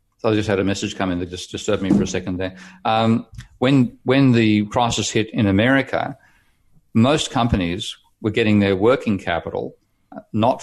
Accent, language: Australian, English